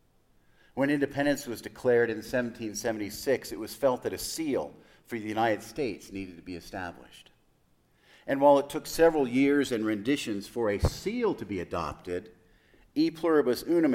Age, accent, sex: 50-69, American, male